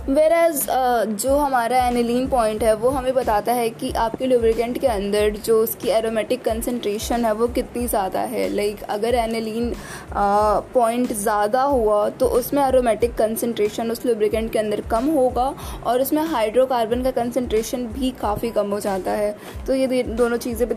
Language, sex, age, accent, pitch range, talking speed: Hindi, female, 20-39, native, 225-260 Hz, 170 wpm